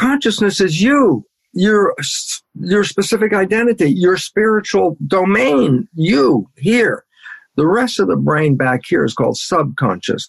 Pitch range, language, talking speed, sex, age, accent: 125-190 Hz, English, 130 wpm, male, 50-69, American